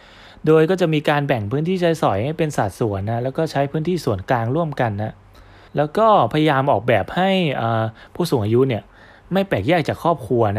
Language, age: Thai, 20-39